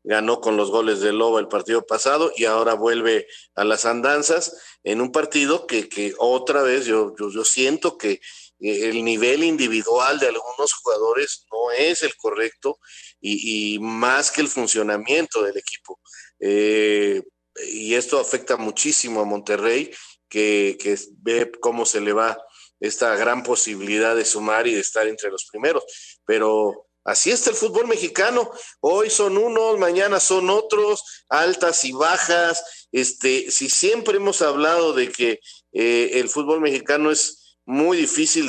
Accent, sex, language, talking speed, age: Mexican, male, Spanish, 155 wpm, 50-69